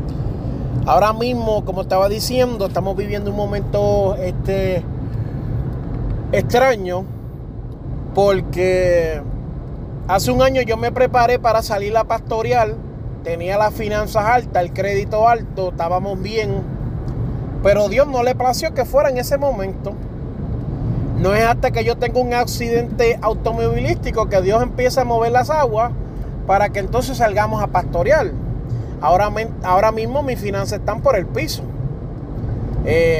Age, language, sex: 30-49, Spanish, male